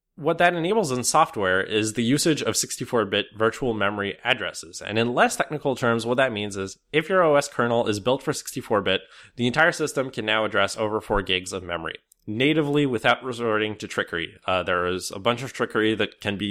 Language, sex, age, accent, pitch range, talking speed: English, male, 20-39, American, 105-145 Hz, 205 wpm